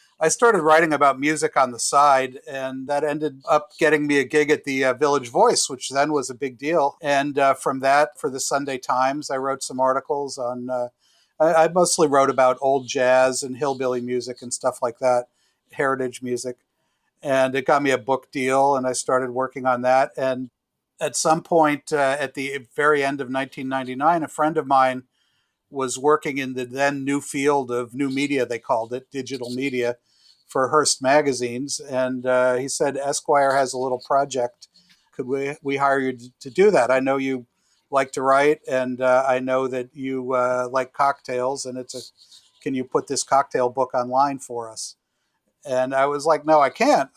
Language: English